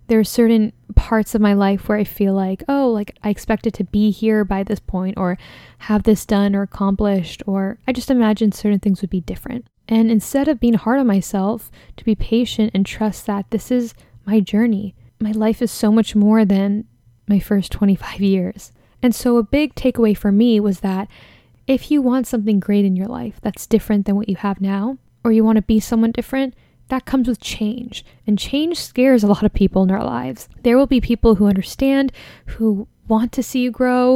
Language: English